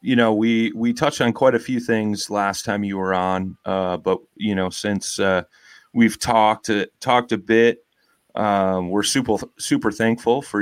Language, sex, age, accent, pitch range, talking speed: English, male, 30-49, American, 95-115 Hz, 185 wpm